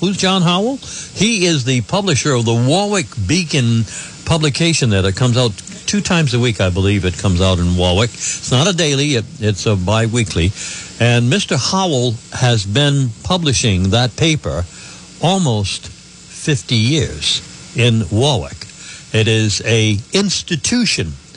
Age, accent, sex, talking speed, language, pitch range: 60-79, American, male, 145 wpm, English, 105-150 Hz